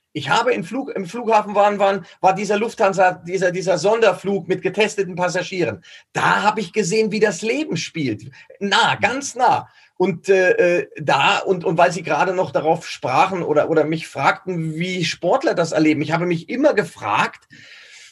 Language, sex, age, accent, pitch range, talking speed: German, male, 40-59, German, 175-230 Hz, 170 wpm